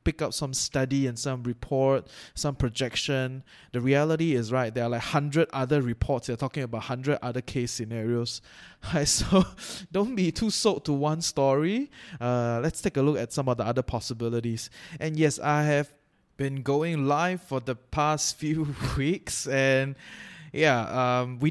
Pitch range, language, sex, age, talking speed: 125-160 Hz, English, male, 20-39, 175 wpm